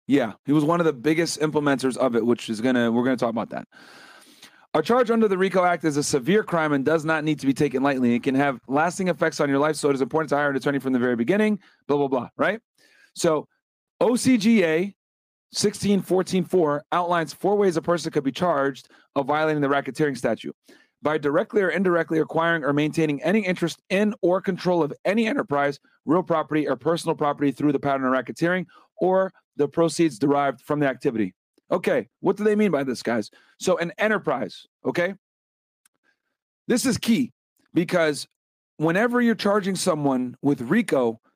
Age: 30-49